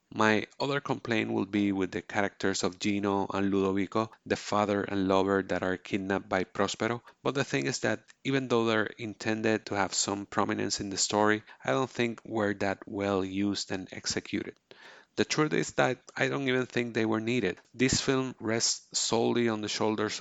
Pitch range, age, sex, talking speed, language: 100-115 Hz, 30-49, male, 190 wpm, English